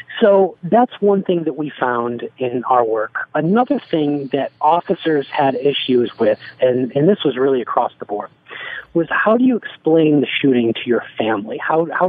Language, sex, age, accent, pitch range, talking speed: English, male, 40-59, American, 140-180 Hz, 180 wpm